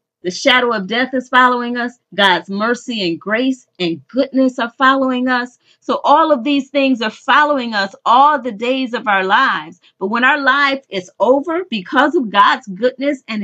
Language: English